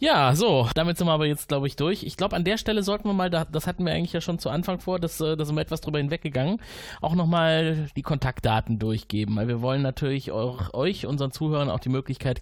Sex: male